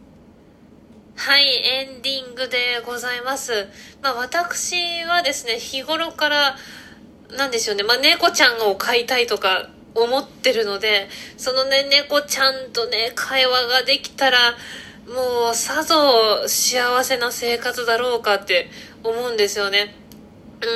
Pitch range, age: 235-295 Hz, 20-39